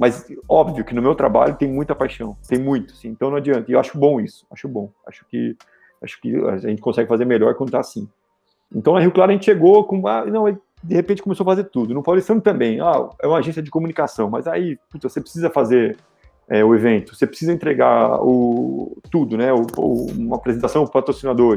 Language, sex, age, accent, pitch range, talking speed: Portuguese, male, 30-49, Brazilian, 120-155 Hz, 225 wpm